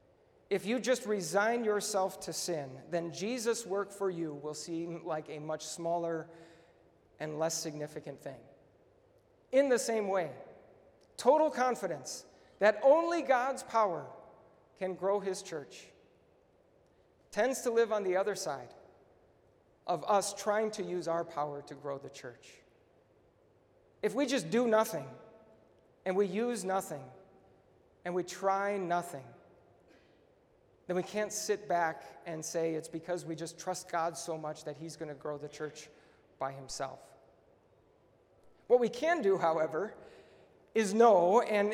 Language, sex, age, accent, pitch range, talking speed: English, male, 40-59, American, 165-220 Hz, 140 wpm